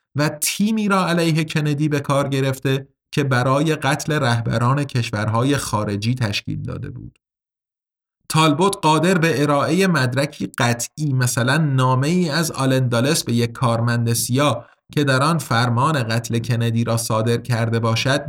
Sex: male